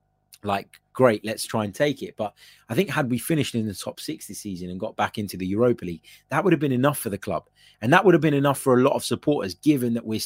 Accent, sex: British, male